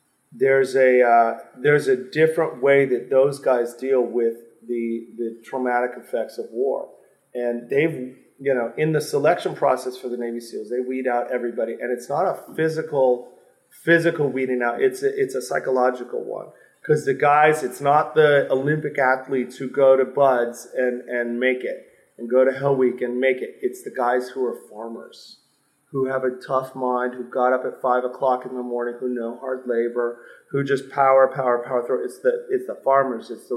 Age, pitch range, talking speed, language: 40-59, 125-145 Hz, 195 wpm, English